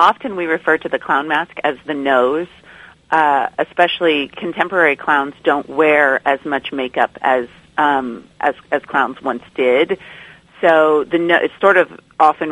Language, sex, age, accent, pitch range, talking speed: English, female, 40-59, American, 145-165 Hz, 160 wpm